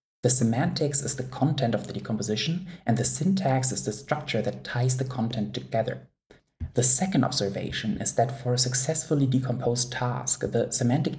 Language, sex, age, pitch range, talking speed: English, male, 20-39, 105-130 Hz, 165 wpm